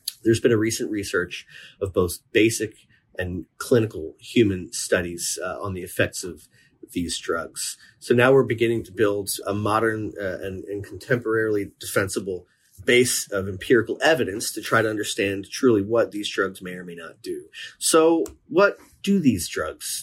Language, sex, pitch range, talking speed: English, male, 105-135 Hz, 160 wpm